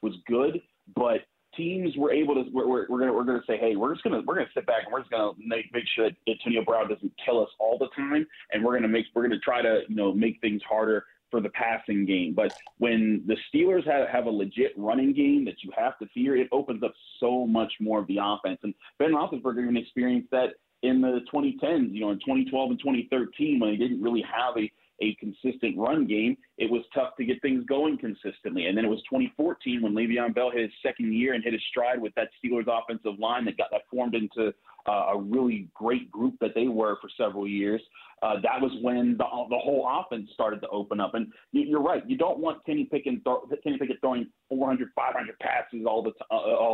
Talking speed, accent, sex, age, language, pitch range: 225 wpm, American, male, 30-49, English, 110-150 Hz